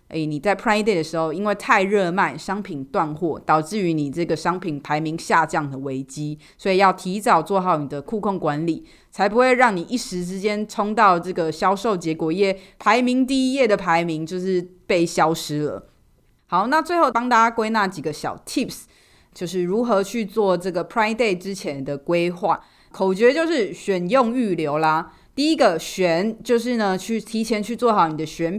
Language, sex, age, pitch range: Chinese, female, 20-39, 165-215 Hz